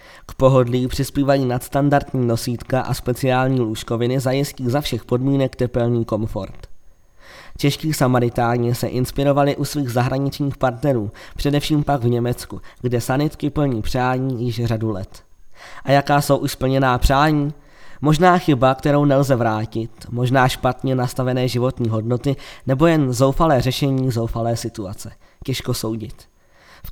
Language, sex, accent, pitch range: Czech, male, native, 120-140 Hz